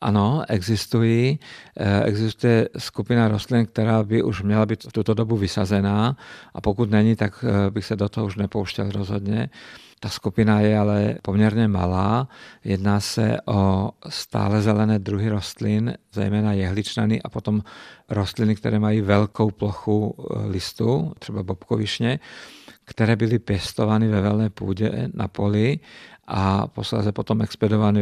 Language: Czech